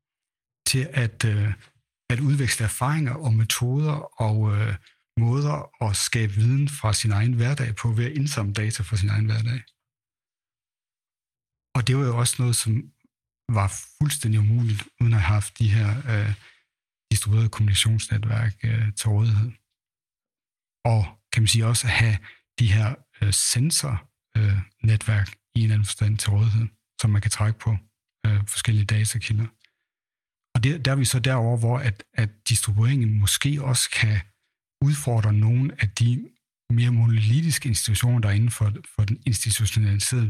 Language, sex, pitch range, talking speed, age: Danish, male, 105-125 Hz, 150 wpm, 60-79